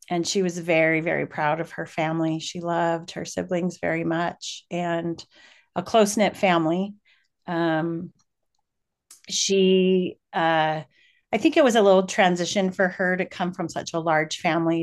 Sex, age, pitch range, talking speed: female, 40-59, 165-185 Hz, 155 wpm